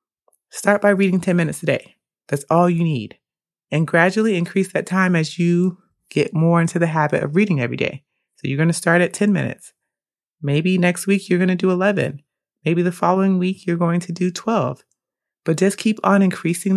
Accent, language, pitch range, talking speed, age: American, English, 150-185 Hz, 205 wpm, 30-49